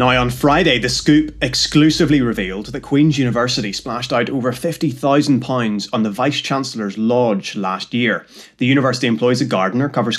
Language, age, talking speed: English, 30-49, 155 wpm